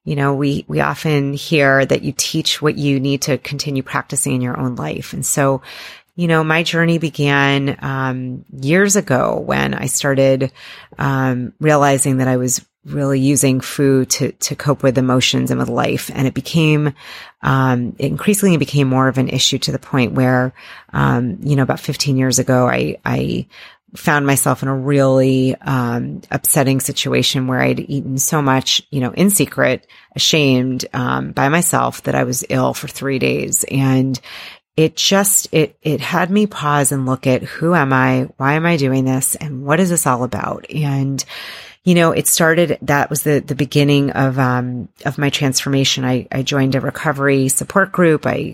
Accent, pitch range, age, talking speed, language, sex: American, 130-150 Hz, 30-49, 180 wpm, English, female